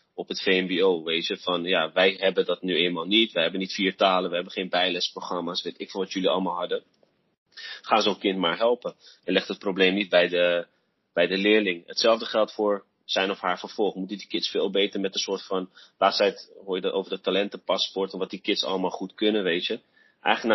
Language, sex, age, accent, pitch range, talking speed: Dutch, male, 30-49, Dutch, 90-105 Hz, 230 wpm